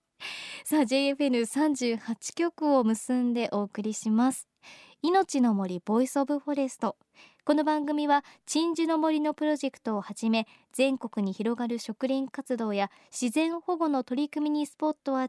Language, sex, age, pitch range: Japanese, male, 20-39, 230-305 Hz